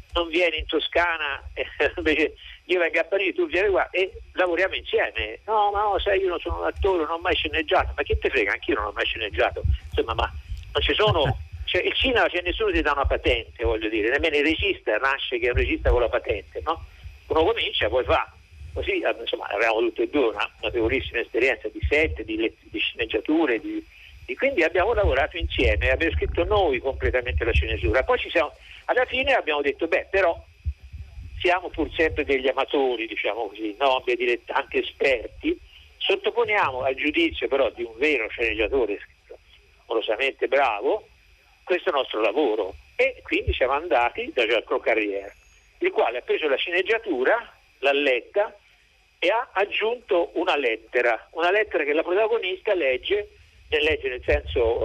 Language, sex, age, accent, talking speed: Italian, male, 50-69, native, 175 wpm